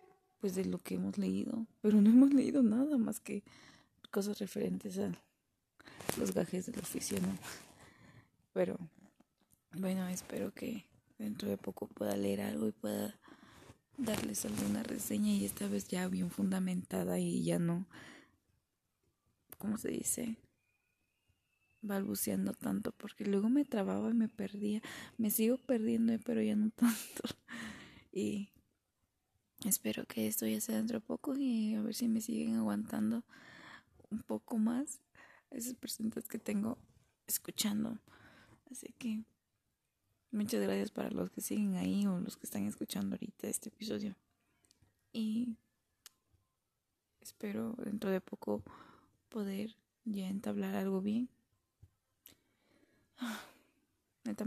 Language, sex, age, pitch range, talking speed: Spanish, female, 20-39, 140-230 Hz, 130 wpm